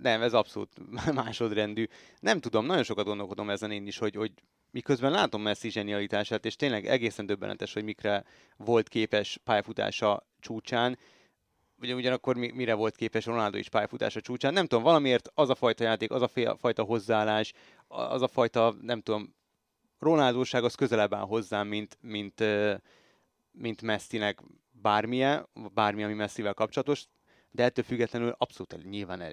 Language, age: Hungarian, 30-49